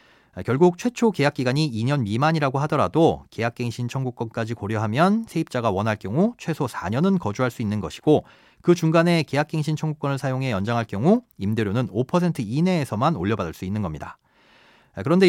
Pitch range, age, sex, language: 120-170 Hz, 40-59, male, Korean